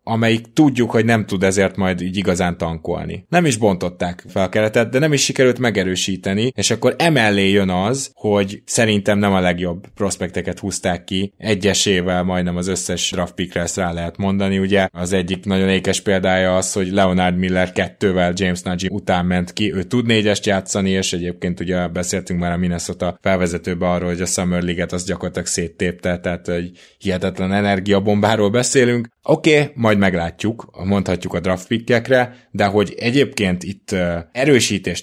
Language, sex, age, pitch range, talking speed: Hungarian, male, 20-39, 90-105 Hz, 165 wpm